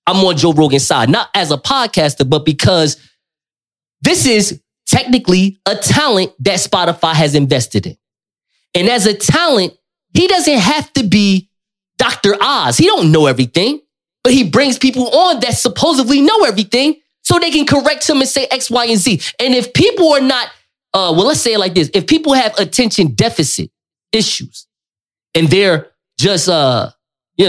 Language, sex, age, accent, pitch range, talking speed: English, male, 20-39, American, 160-255 Hz, 170 wpm